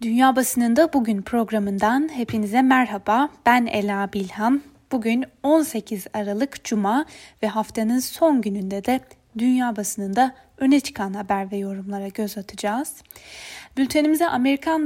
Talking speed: 115 wpm